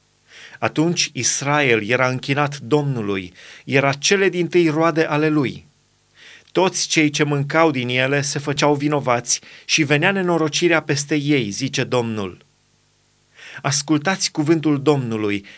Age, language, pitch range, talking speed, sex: 30-49, Romanian, 140-170 Hz, 115 wpm, male